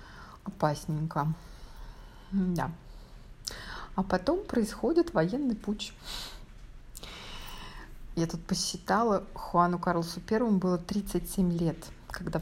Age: 30-49